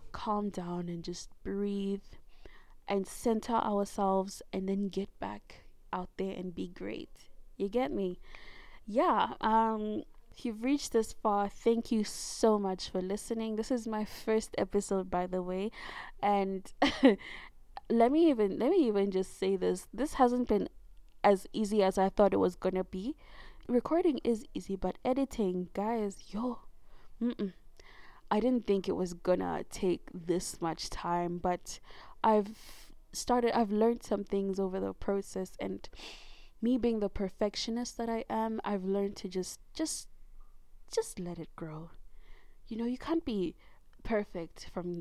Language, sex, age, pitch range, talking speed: English, female, 20-39, 190-230 Hz, 155 wpm